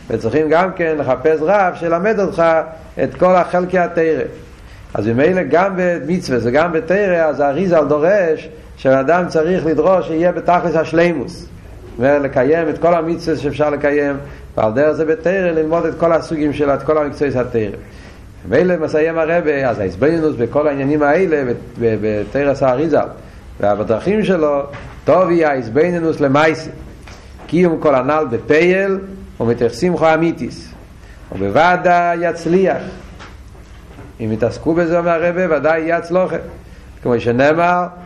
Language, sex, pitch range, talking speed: Hebrew, male, 120-170 Hz, 130 wpm